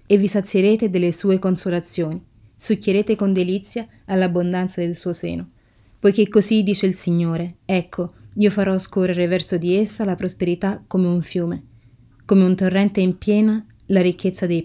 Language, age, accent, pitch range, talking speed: Italian, 20-39, native, 175-200 Hz, 155 wpm